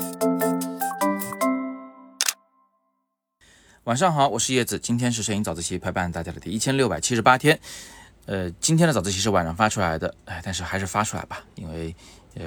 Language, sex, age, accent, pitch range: Chinese, male, 30-49, native, 85-110 Hz